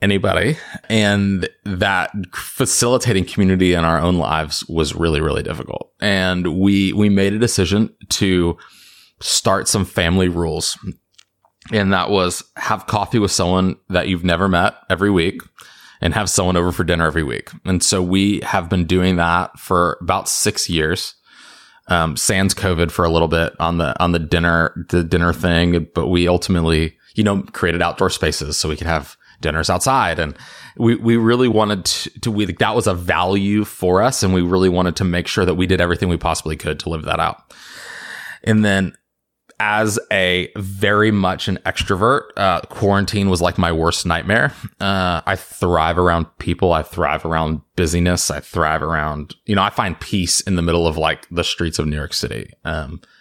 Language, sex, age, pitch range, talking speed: English, male, 20-39, 85-100 Hz, 180 wpm